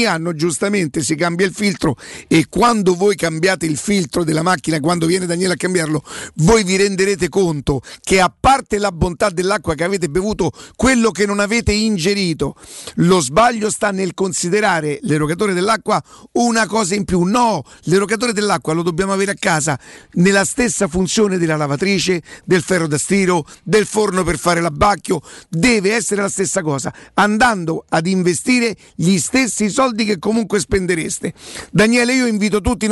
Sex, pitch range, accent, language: male, 175-215 Hz, native, Italian